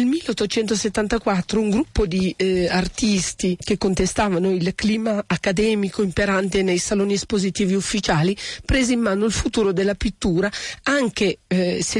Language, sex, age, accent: Italian, female, 40-59, native